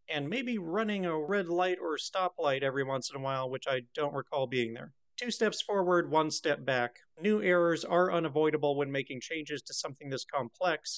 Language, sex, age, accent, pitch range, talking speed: English, male, 30-49, American, 150-185 Hz, 195 wpm